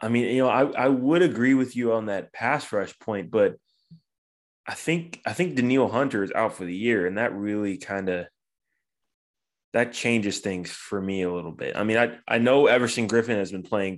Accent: American